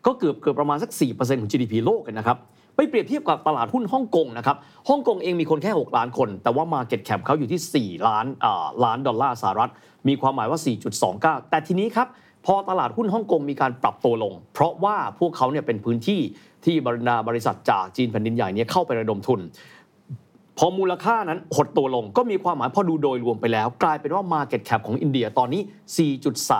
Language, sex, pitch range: Thai, male, 120-185 Hz